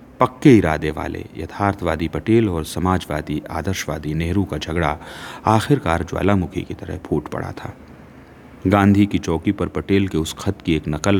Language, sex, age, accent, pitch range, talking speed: Hindi, male, 40-59, native, 75-110 Hz, 155 wpm